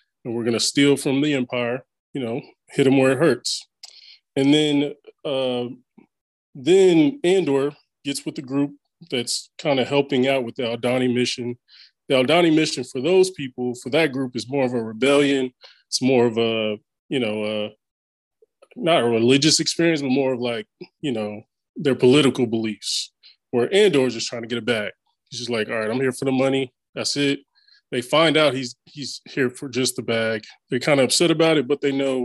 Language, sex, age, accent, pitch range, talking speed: English, male, 20-39, American, 125-150 Hz, 200 wpm